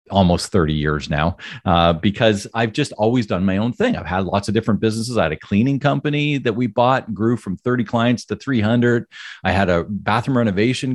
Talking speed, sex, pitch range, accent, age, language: 210 wpm, male, 95-120 Hz, American, 40-59, English